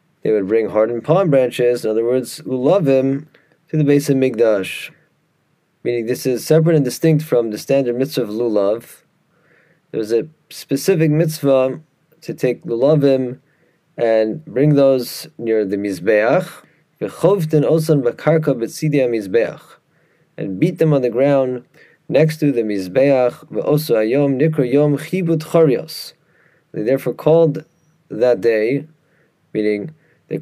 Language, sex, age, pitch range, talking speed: English, male, 30-49, 120-155 Hz, 125 wpm